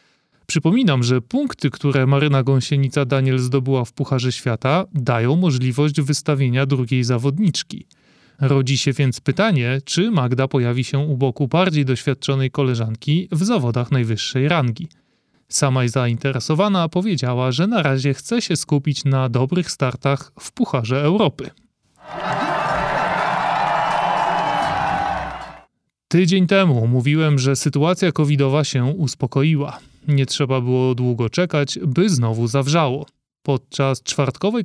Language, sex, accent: Polish, male, native